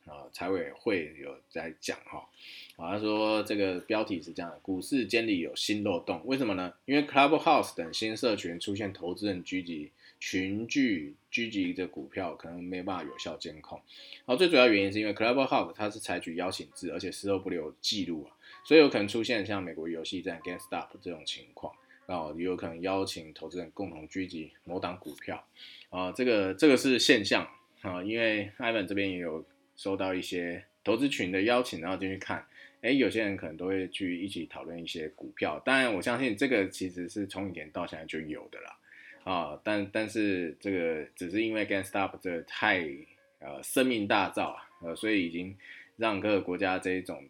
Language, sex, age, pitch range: Chinese, male, 20-39, 90-110 Hz